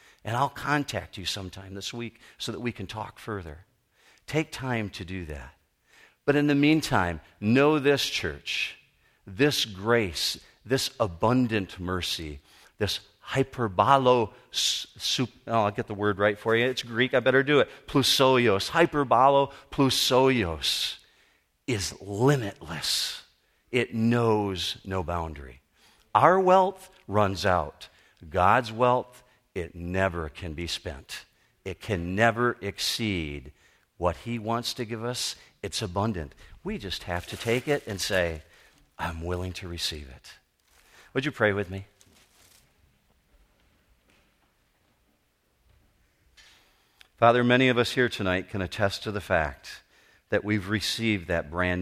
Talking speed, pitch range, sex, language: 130 wpm, 90-125 Hz, male, English